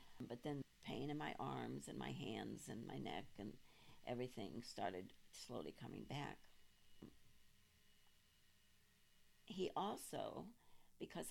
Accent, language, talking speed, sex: American, English, 110 wpm, female